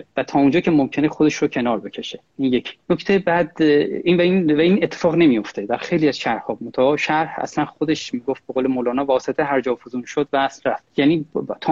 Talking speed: 200 wpm